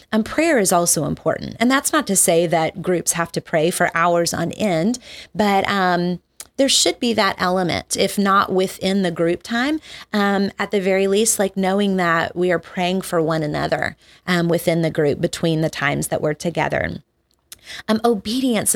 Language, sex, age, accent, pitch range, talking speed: English, female, 30-49, American, 165-200 Hz, 185 wpm